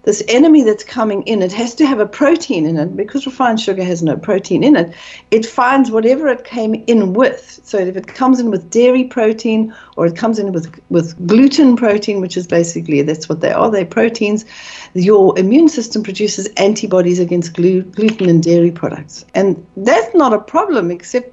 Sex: female